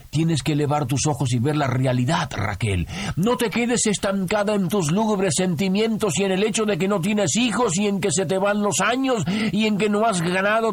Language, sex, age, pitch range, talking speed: Spanish, male, 50-69, 180-210 Hz, 230 wpm